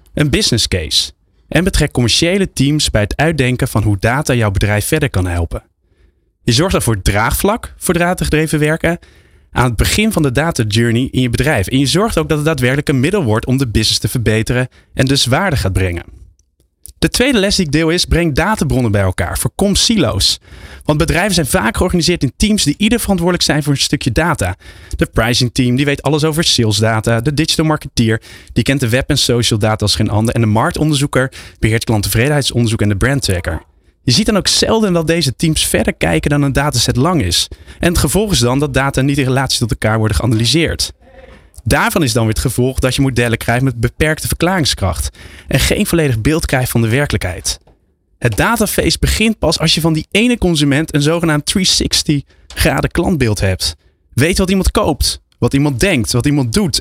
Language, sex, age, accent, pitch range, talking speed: Dutch, male, 20-39, Dutch, 105-160 Hz, 200 wpm